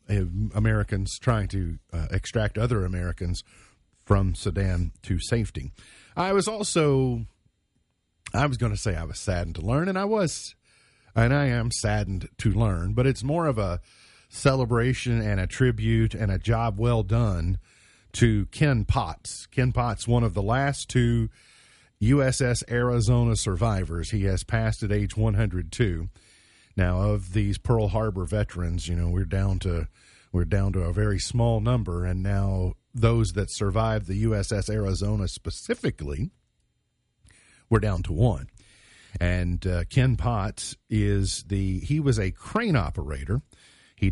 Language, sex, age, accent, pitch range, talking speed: English, male, 40-59, American, 95-120 Hz, 150 wpm